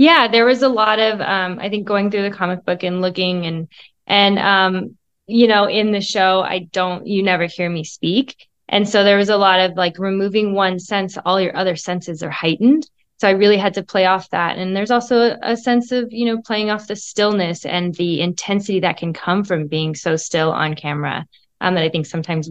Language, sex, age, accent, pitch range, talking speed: English, female, 20-39, American, 165-200 Hz, 230 wpm